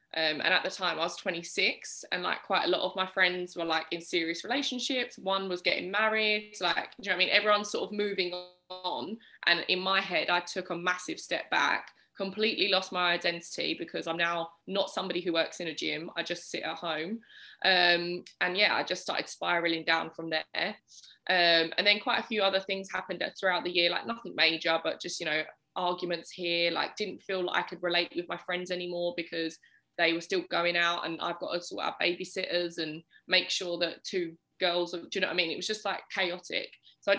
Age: 20-39